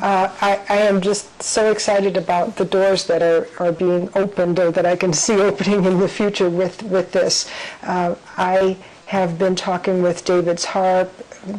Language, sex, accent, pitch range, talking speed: English, female, American, 180-205 Hz, 180 wpm